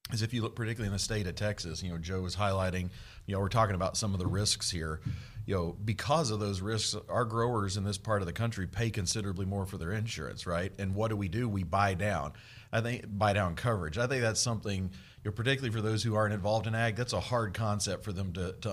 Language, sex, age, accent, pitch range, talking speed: English, male, 40-59, American, 95-115 Hz, 260 wpm